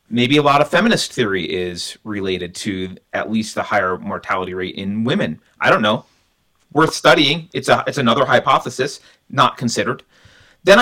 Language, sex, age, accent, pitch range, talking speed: English, male, 30-49, American, 105-150 Hz, 165 wpm